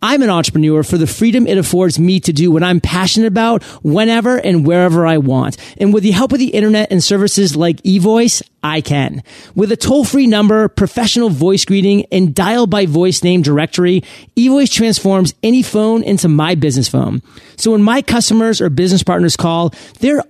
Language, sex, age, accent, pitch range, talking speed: English, male, 30-49, American, 170-215 Hz, 180 wpm